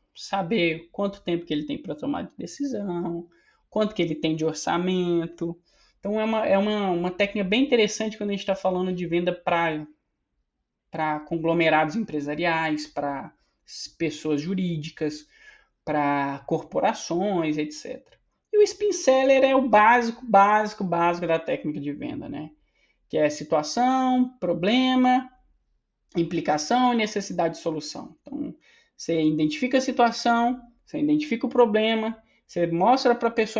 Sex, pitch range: male, 170-230 Hz